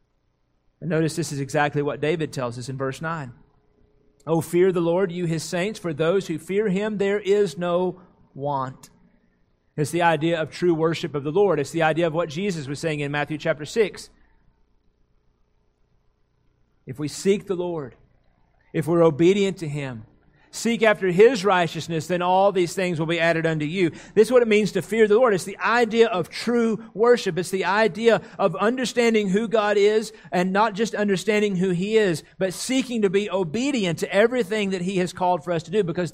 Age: 40-59